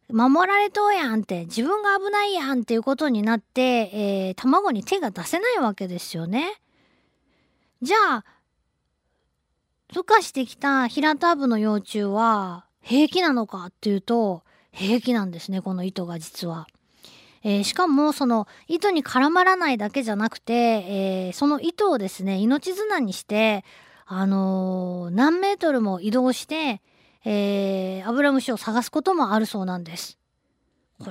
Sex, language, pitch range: female, Japanese, 200-310 Hz